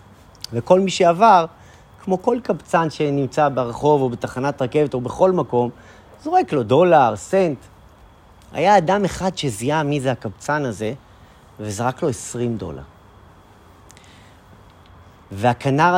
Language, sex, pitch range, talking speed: Hebrew, male, 105-150 Hz, 115 wpm